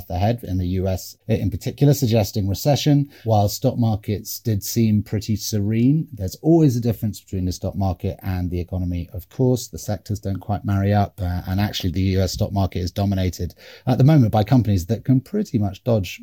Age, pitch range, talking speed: 30-49, 95-120 Hz, 195 wpm